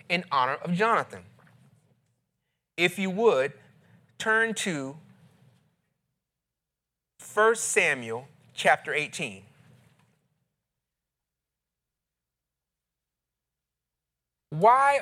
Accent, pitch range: American, 135-200 Hz